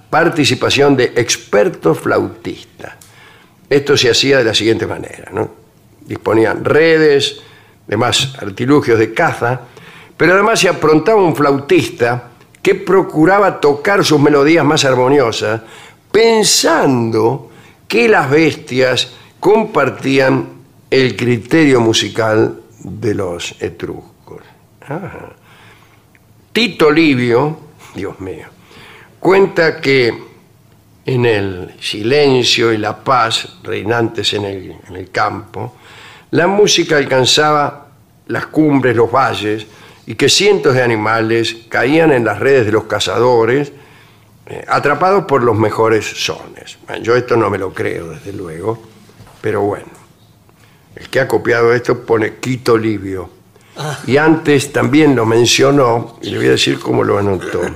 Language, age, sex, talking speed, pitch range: Spanish, 60-79, male, 120 wpm, 115-150 Hz